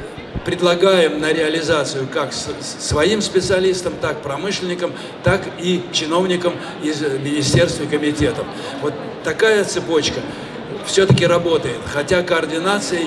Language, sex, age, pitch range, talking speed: Russian, male, 60-79, 160-190 Hz, 100 wpm